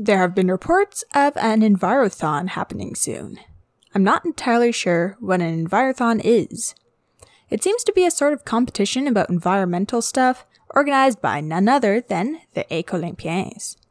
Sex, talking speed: female, 150 wpm